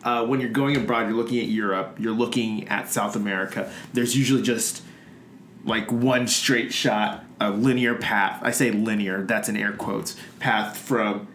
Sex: male